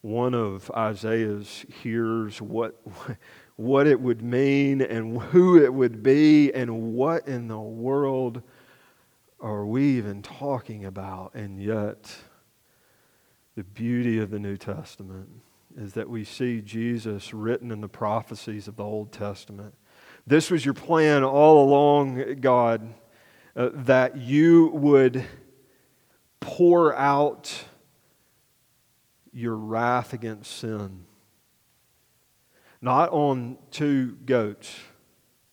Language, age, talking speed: English, 40-59, 110 wpm